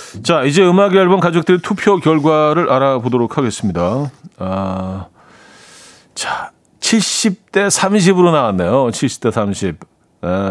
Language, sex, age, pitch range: Korean, male, 40-59, 115-175 Hz